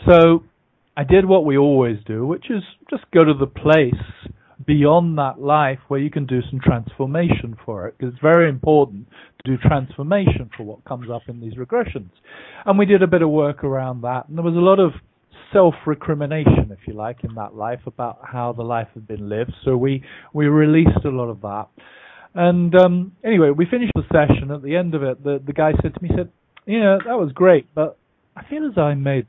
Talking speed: 220 wpm